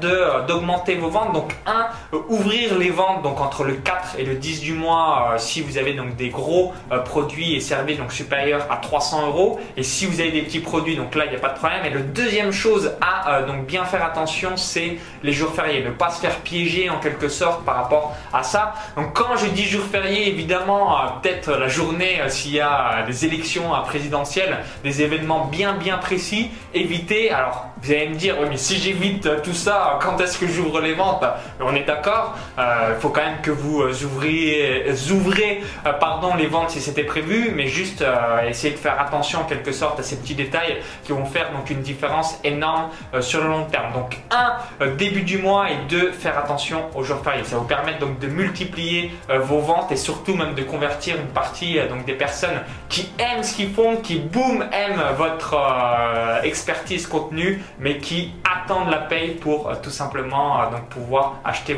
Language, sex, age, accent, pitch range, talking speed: French, male, 20-39, French, 145-185 Hz, 220 wpm